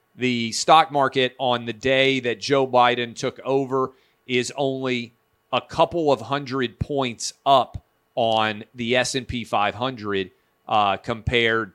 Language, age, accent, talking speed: English, 40-59, American, 130 wpm